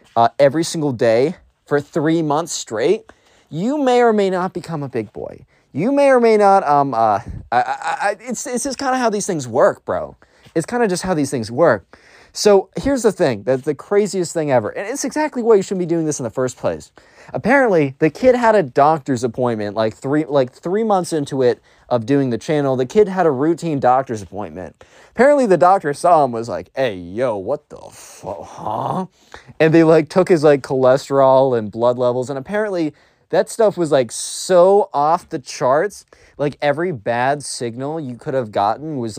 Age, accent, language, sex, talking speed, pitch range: 20-39, American, English, male, 205 wpm, 135-200 Hz